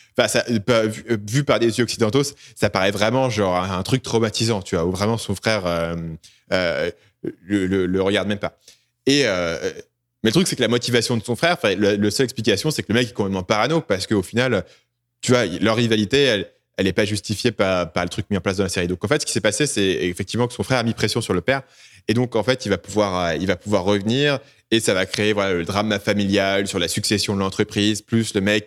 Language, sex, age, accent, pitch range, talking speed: French, male, 20-39, French, 100-120 Hz, 255 wpm